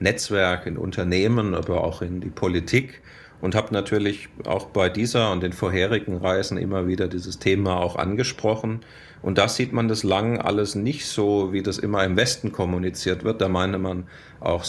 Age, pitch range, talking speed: 40-59, 90-110 Hz, 180 wpm